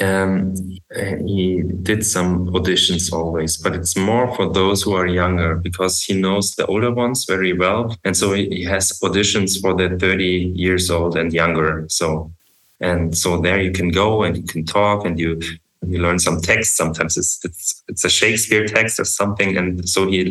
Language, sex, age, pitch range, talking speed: English, male, 20-39, 90-105 Hz, 185 wpm